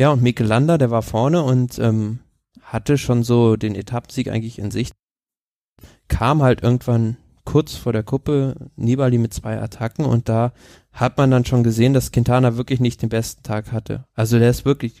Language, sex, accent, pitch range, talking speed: German, male, German, 115-135 Hz, 185 wpm